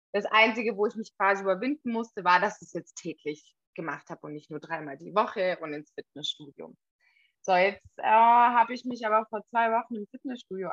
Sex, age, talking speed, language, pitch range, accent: female, 20-39, 205 wpm, German, 185-255 Hz, German